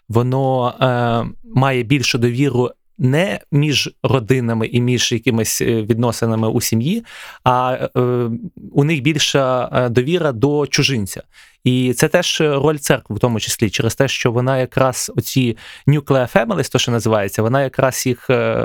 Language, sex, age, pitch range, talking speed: Ukrainian, male, 20-39, 120-145 Hz, 140 wpm